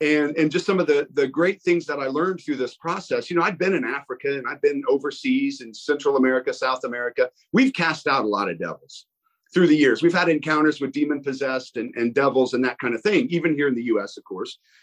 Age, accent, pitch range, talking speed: 40-59, American, 145-185 Hz, 245 wpm